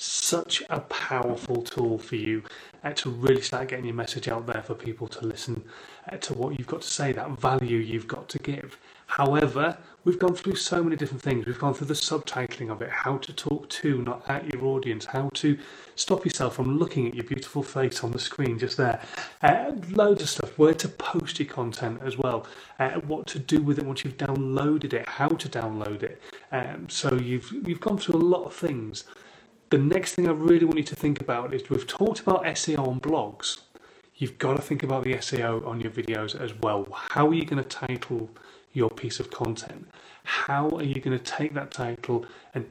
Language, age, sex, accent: English, 30-49, male, British